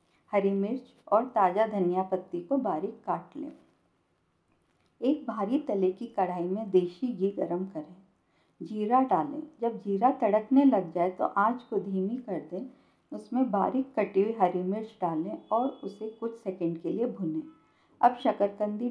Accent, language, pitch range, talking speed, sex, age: native, Hindi, 185-245 Hz, 155 wpm, female, 50-69